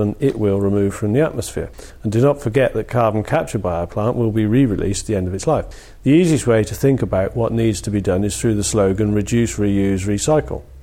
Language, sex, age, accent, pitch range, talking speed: English, male, 40-59, British, 105-125 Hz, 245 wpm